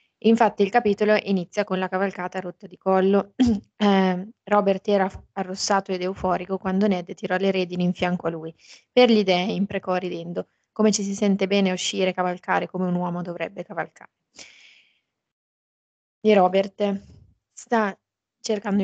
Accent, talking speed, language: native, 145 wpm, Italian